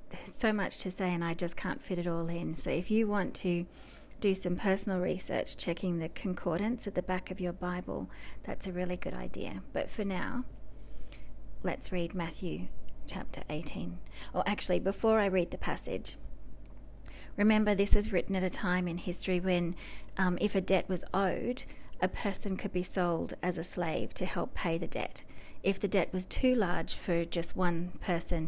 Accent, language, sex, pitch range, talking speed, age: Australian, English, female, 165-190 Hz, 190 wpm, 30-49